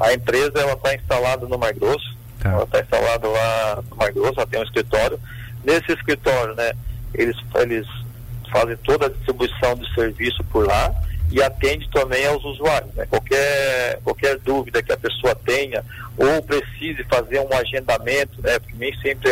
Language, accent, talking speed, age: Portuguese, Brazilian, 170 wpm, 50-69